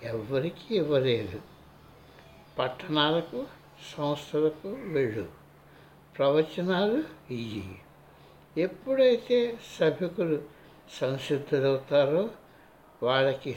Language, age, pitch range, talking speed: Telugu, 60-79, 125-175 Hz, 50 wpm